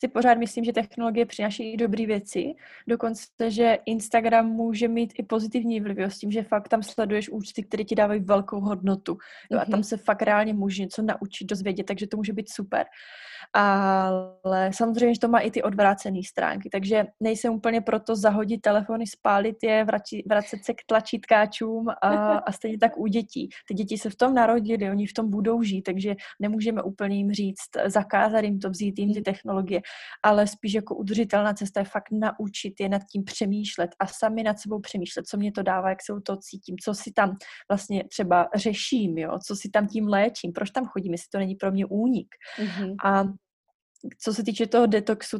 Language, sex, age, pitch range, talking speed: Slovak, female, 20-39, 200-225 Hz, 190 wpm